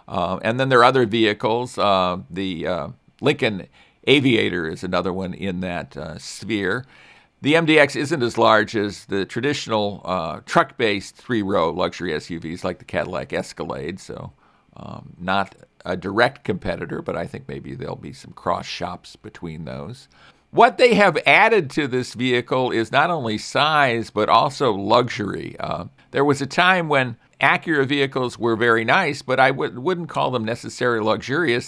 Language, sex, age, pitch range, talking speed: English, male, 50-69, 100-140 Hz, 160 wpm